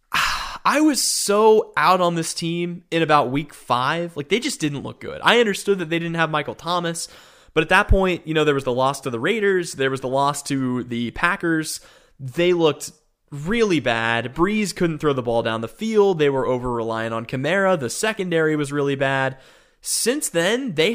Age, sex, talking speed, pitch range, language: 20-39, male, 200 wpm, 135-175 Hz, English